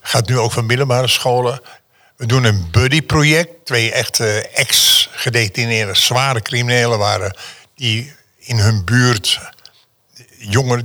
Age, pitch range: 60-79, 110-135 Hz